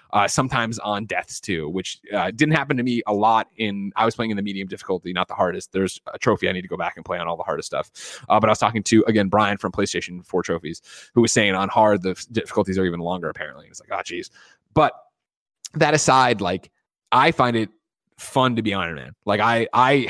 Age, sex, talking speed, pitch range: 20-39, male, 250 wpm, 100-120 Hz